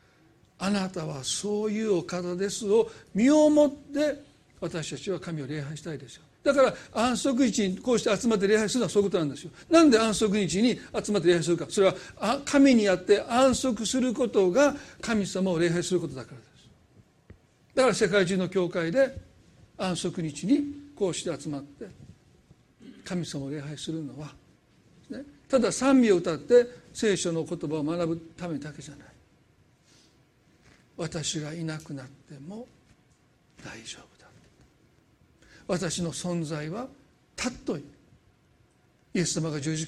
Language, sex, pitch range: Japanese, male, 160-240 Hz